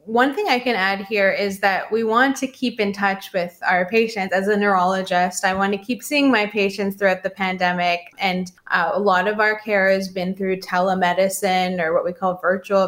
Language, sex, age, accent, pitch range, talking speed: English, female, 20-39, American, 180-210 Hz, 215 wpm